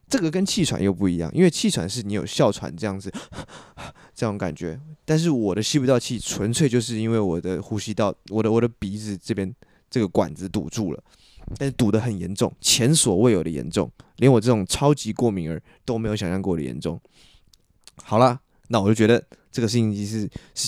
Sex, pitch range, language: male, 100-125 Hz, Chinese